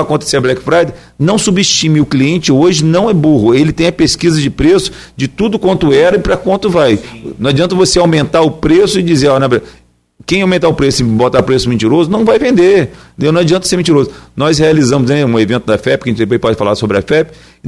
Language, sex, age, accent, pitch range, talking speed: Portuguese, male, 40-59, Brazilian, 125-165 Hz, 225 wpm